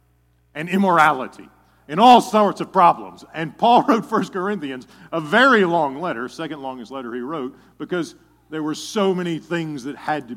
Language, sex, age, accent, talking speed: English, male, 50-69, American, 175 wpm